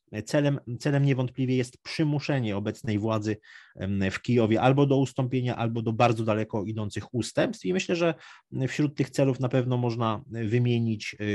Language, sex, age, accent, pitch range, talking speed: Polish, male, 30-49, native, 105-125 Hz, 150 wpm